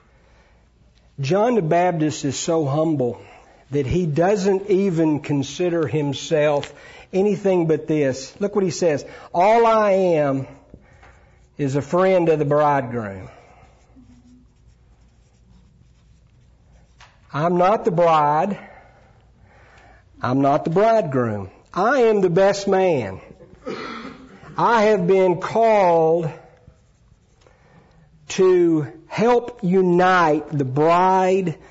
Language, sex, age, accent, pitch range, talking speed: English, male, 50-69, American, 145-190 Hz, 95 wpm